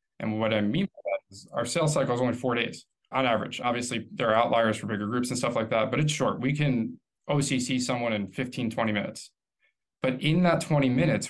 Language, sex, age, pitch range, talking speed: English, male, 20-39, 115-135 Hz, 230 wpm